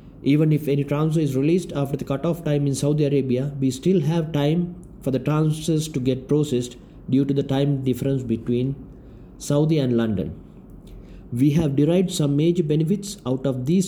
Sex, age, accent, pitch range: male, 50-69, Indian, 130-165 Hz